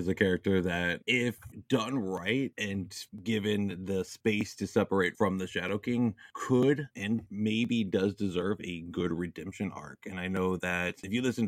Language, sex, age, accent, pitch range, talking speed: English, male, 20-39, American, 90-110 Hz, 175 wpm